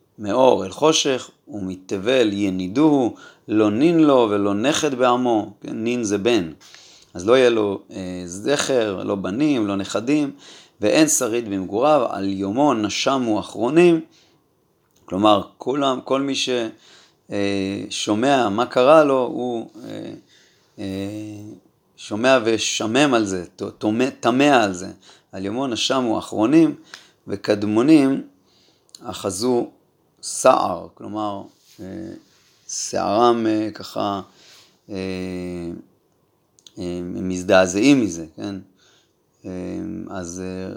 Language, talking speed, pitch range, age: Hebrew, 95 wpm, 100-130 Hz, 30-49